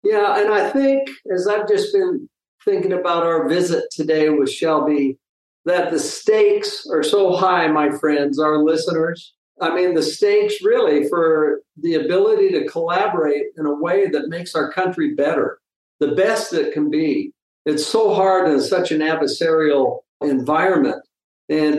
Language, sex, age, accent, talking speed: English, male, 50-69, American, 155 wpm